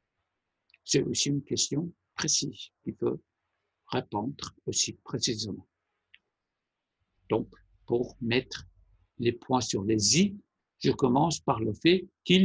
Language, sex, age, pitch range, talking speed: Persian, male, 60-79, 120-155 Hz, 125 wpm